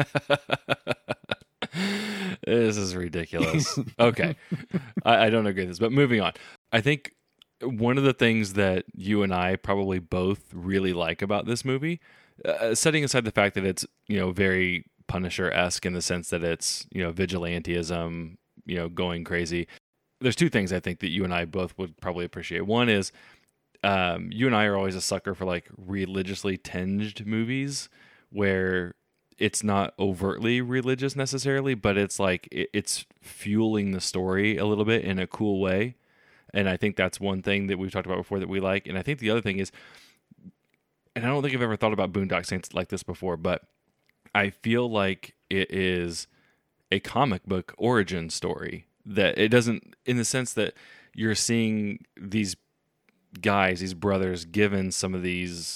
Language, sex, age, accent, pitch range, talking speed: English, male, 20-39, American, 90-115 Hz, 175 wpm